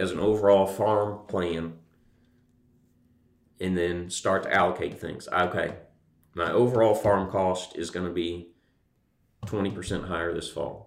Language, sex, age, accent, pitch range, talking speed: English, male, 30-49, American, 90-105 Hz, 125 wpm